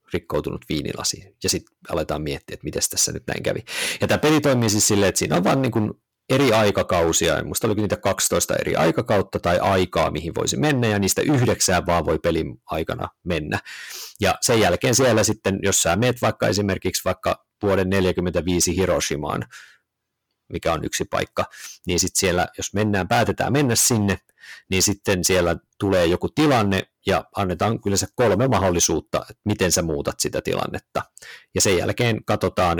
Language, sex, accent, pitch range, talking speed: Finnish, male, native, 90-110 Hz, 170 wpm